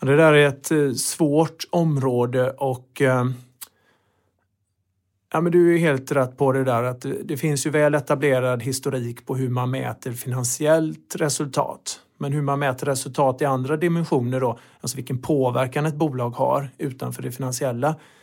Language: Swedish